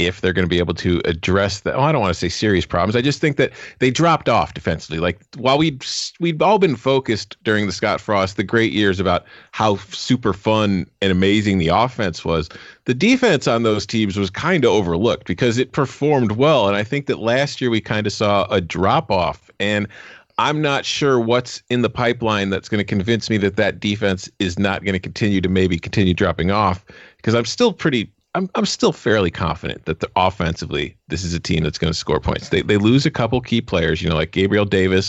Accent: American